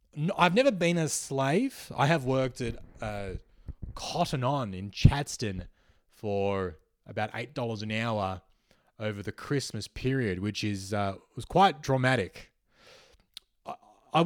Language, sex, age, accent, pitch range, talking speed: English, male, 20-39, Australian, 105-160 Hz, 125 wpm